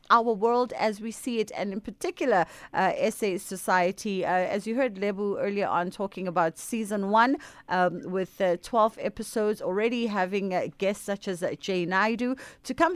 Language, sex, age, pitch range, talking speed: English, female, 30-49, 190-235 Hz, 180 wpm